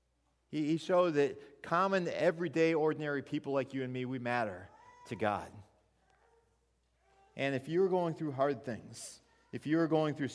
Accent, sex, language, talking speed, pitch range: American, male, English, 150 wpm, 130-170 Hz